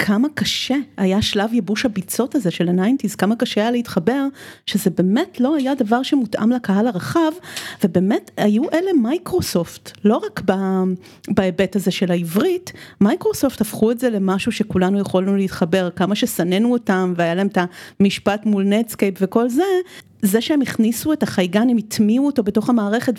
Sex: female